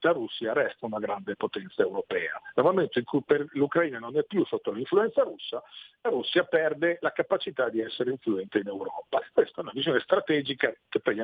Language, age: Italian, 50-69